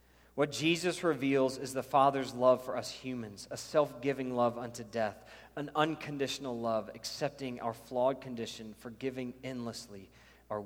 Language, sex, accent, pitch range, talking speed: English, male, American, 100-140 Hz, 140 wpm